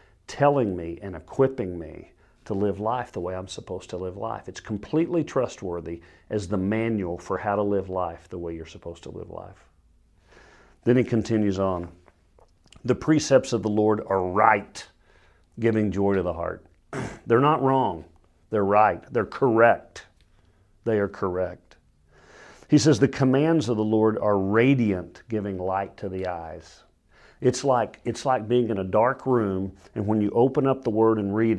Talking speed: 175 wpm